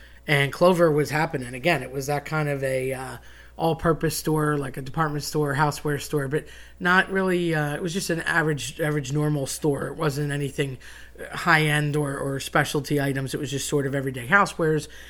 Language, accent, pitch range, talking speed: English, American, 135-155 Hz, 185 wpm